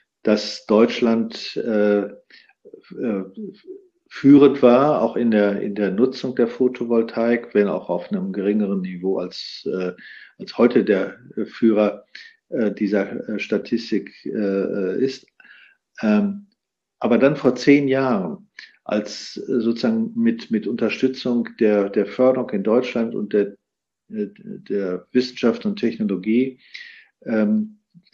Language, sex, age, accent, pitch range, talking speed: German, male, 50-69, German, 105-150 Hz, 120 wpm